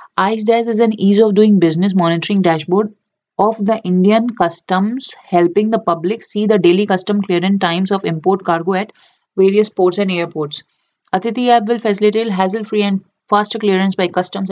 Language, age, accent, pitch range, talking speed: English, 30-49, Indian, 175-205 Hz, 165 wpm